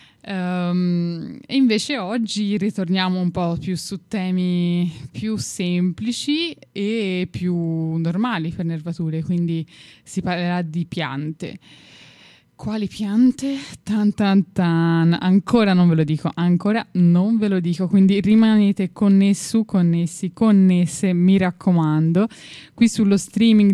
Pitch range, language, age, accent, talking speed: 170-200 Hz, Italian, 10-29, native, 115 wpm